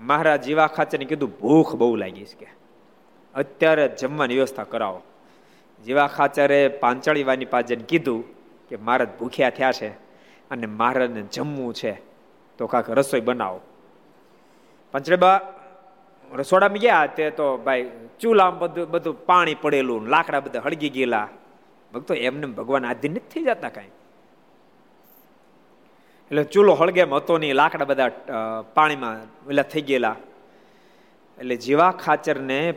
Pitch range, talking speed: 130-170 Hz, 95 wpm